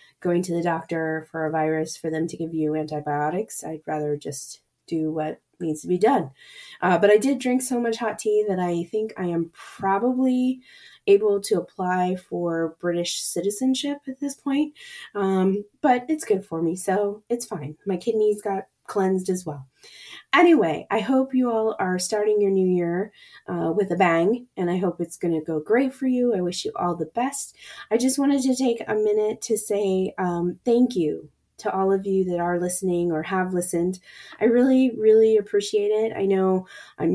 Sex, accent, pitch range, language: female, American, 175-230 Hz, English